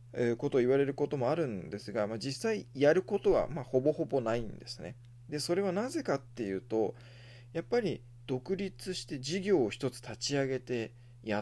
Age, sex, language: 20-39, male, Japanese